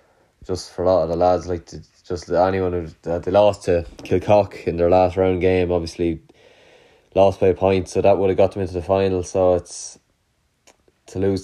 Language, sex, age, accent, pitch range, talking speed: English, male, 20-39, Irish, 85-95 Hz, 205 wpm